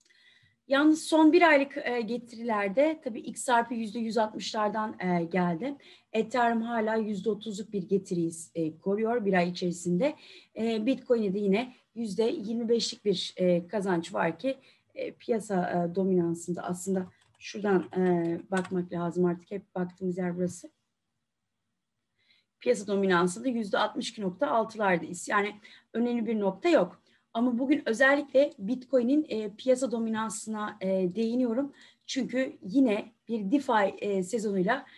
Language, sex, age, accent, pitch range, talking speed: Turkish, female, 30-49, native, 190-255 Hz, 105 wpm